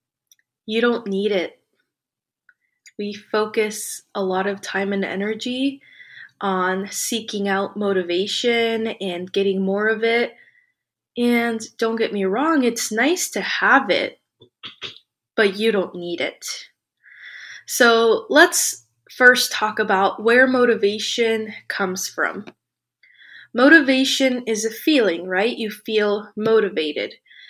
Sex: female